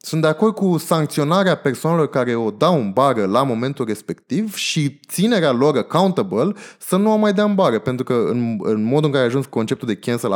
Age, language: 20-39, Romanian